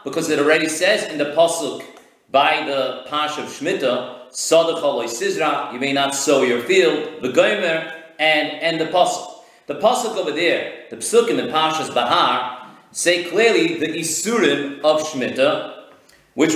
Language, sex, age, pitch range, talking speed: English, male, 40-59, 150-215 Hz, 155 wpm